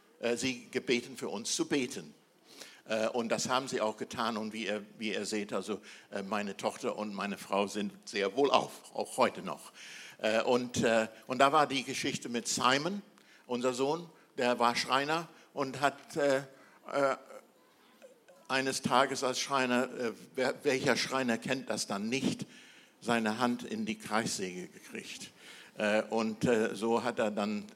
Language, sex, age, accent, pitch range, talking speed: German, male, 60-79, German, 105-125 Hz, 145 wpm